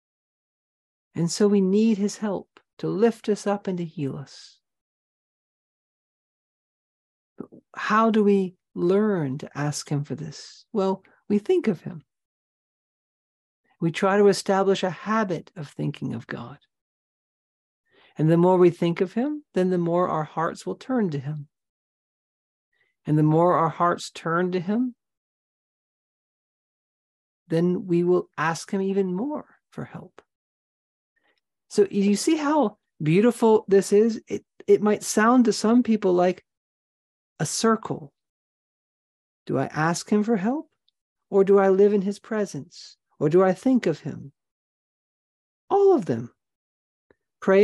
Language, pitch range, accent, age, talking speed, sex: English, 165-210 Hz, American, 50-69, 140 wpm, male